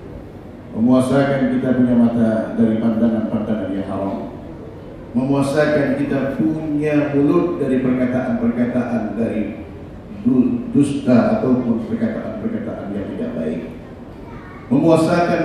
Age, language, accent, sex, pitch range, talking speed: 50-69, Indonesian, native, male, 125-165 Hz, 85 wpm